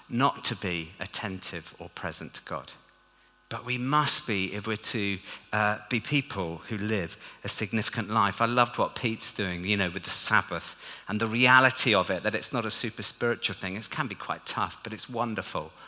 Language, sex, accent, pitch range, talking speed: English, male, British, 100-130 Hz, 200 wpm